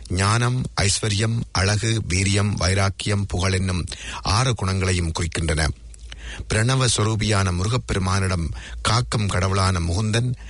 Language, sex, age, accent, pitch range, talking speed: English, male, 50-69, Indian, 90-110 Hz, 90 wpm